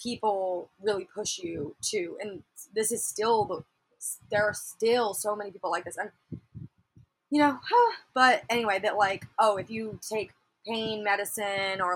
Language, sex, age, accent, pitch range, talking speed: English, female, 20-39, American, 195-235 Hz, 165 wpm